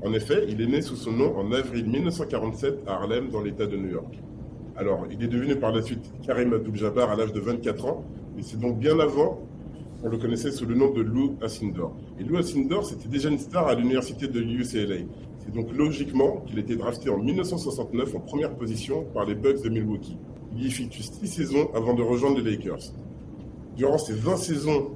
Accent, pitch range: French, 110-140 Hz